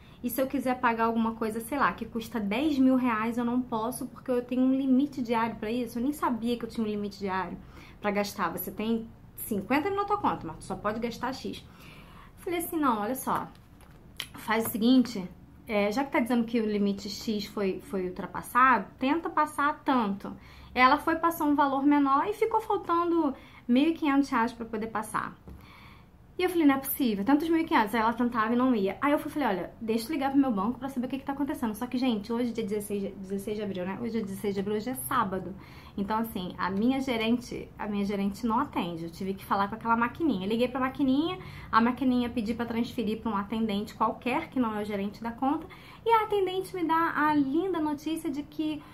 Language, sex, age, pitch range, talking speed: Portuguese, female, 20-39, 220-285 Hz, 225 wpm